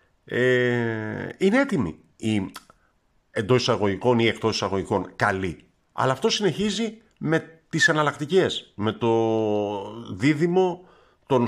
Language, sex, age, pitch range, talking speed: Greek, male, 50-69, 100-150 Hz, 100 wpm